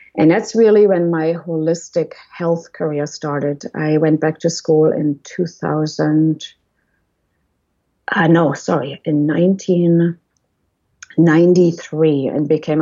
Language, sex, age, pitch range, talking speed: English, female, 30-49, 150-170 Hz, 110 wpm